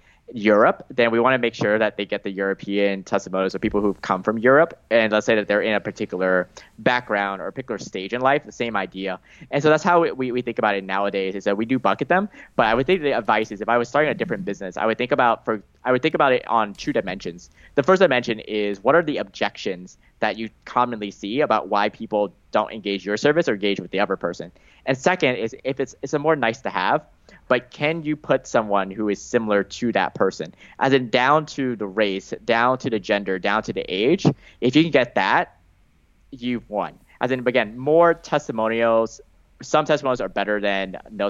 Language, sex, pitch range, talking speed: English, male, 100-130 Hz, 235 wpm